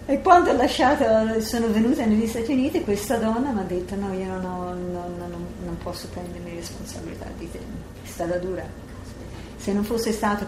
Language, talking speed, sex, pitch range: Italian, 195 wpm, female, 175-195 Hz